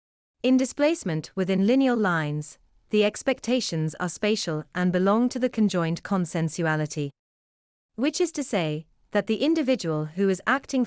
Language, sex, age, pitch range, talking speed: English, female, 30-49, 160-230 Hz, 140 wpm